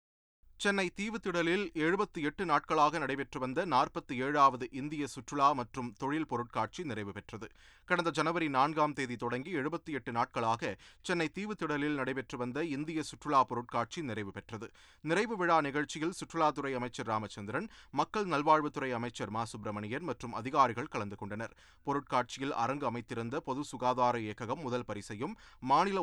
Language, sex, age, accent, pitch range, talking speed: Tamil, male, 30-49, native, 120-160 Hz, 130 wpm